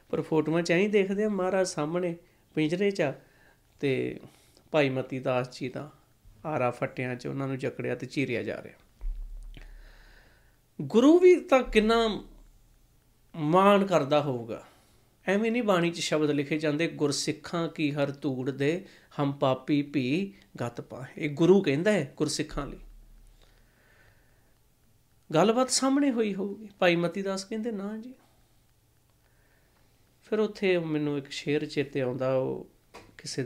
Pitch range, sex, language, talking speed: 130-185 Hz, male, Punjabi, 115 wpm